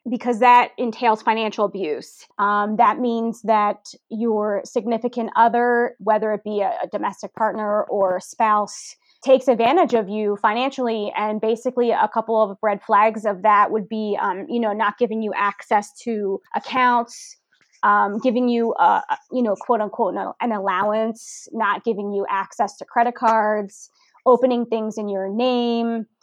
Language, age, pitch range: English, 20-39, 215-255 Hz